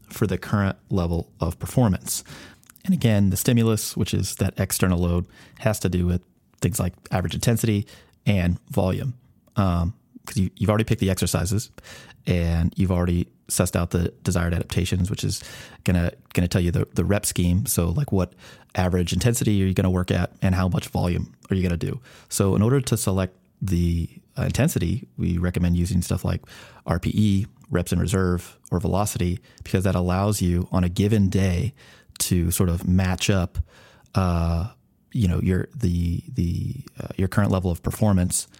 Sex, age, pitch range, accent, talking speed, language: male, 30-49, 90-105 Hz, American, 175 wpm, English